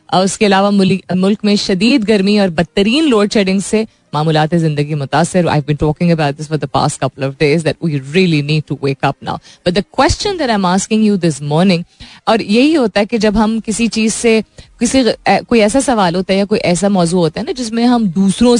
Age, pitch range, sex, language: 20-39, 155-220 Hz, female, Hindi